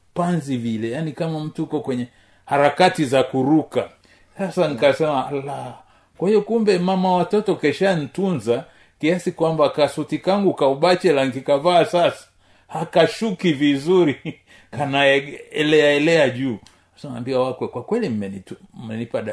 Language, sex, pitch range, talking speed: Swahili, male, 125-175 Hz, 120 wpm